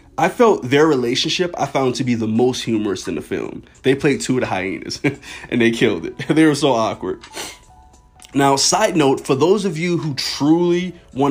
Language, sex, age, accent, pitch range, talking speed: English, male, 30-49, American, 115-160 Hz, 200 wpm